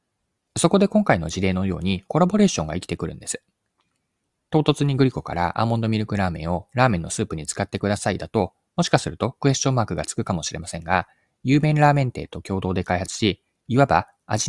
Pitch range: 90-135 Hz